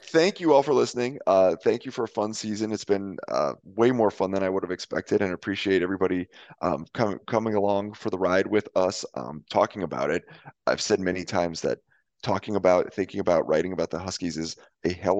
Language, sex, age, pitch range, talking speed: English, male, 30-49, 85-105 Hz, 215 wpm